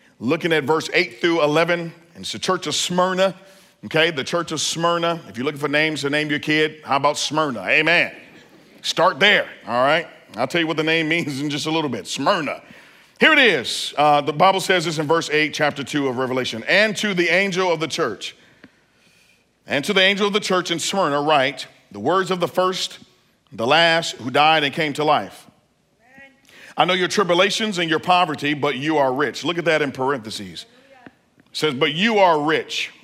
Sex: male